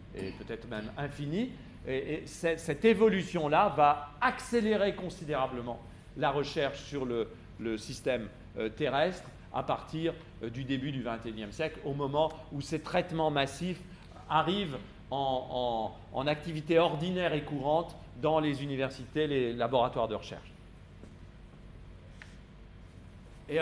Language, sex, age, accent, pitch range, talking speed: French, male, 40-59, French, 120-180 Hz, 125 wpm